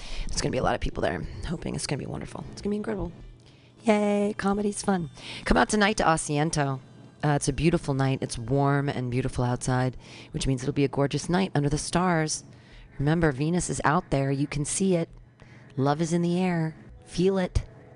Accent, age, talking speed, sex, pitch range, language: American, 40-59, 215 wpm, female, 125-160 Hz, English